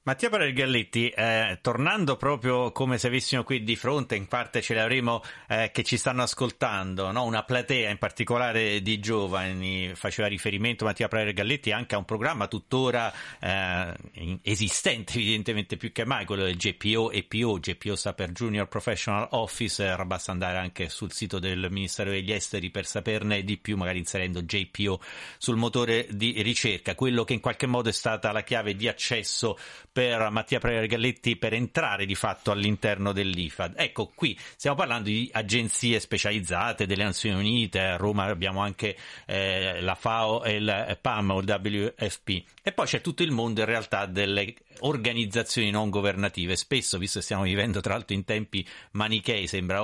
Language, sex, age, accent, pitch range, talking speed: Italian, male, 30-49, native, 100-120 Hz, 160 wpm